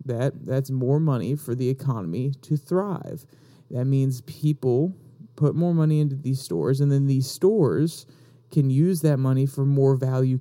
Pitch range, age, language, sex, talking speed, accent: 130-145 Hz, 30-49, English, male, 165 wpm, American